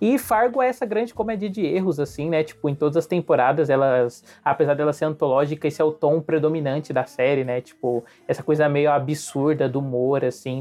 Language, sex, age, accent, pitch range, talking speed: Portuguese, male, 20-39, Brazilian, 135-175 Hz, 205 wpm